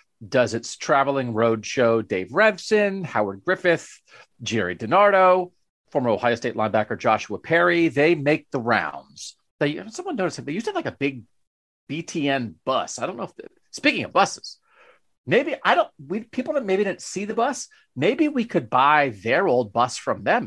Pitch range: 115-170 Hz